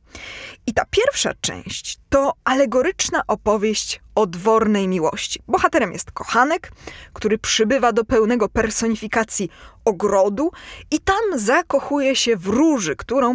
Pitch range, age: 215-295 Hz, 20-39